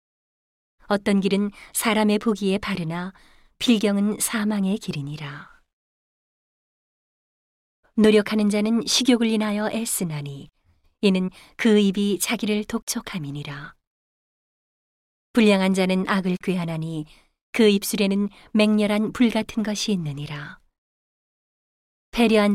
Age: 30-49